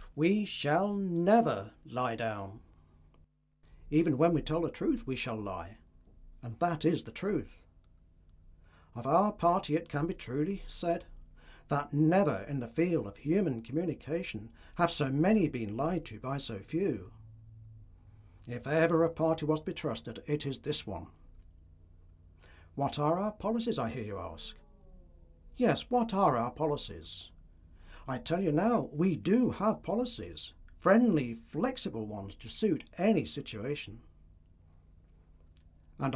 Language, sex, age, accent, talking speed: English, male, 60-79, British, 140 wpm